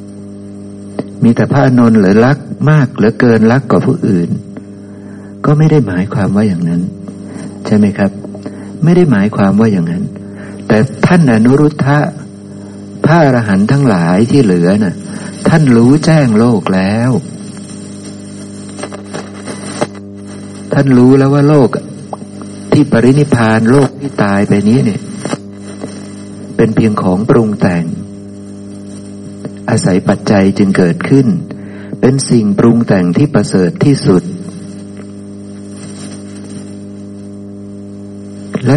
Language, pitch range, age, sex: Thai, 100-125 Hz, 60-79, male